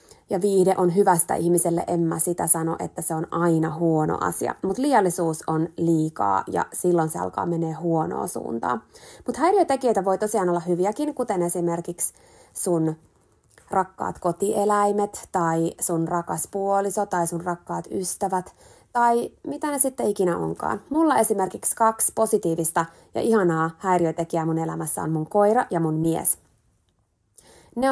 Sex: female